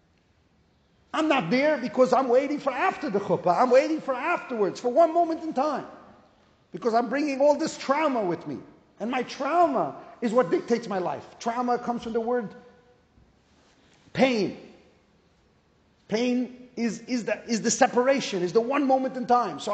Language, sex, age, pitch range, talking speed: English, male, 40-59, 235-290 Hz, 165 wpm